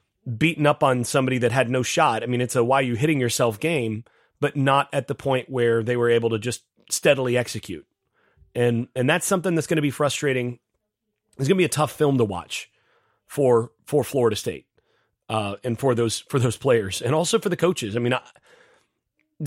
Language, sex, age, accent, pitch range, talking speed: English, male, 30-49, American, 120-155 Hz, 205 wpm